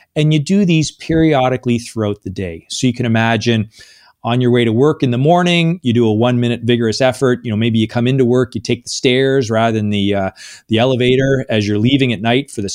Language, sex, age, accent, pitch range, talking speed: English, male, 30-49, American, 110-135 Hz, 235 wpm